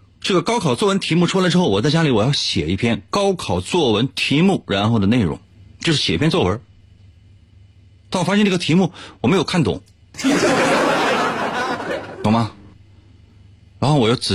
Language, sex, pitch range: Chinese, male, 95-130 Hz